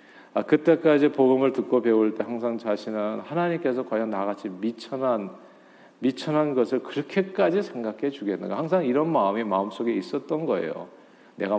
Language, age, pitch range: Korean, 40-59, 115-165 Hz